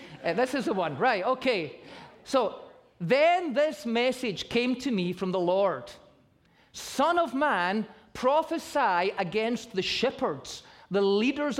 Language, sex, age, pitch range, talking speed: English, male, 30-49, 220-310 Hz, 135 wpm